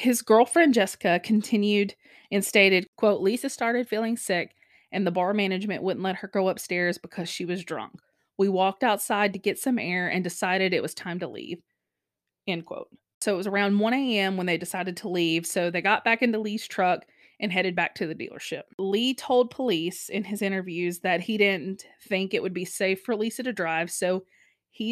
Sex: female